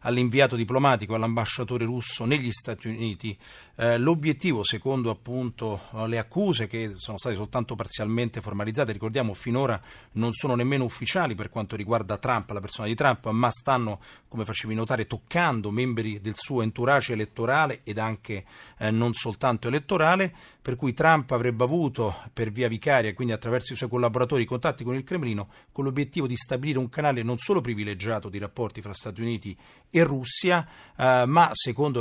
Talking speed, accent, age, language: 160 wpm, native, 40-59, Italian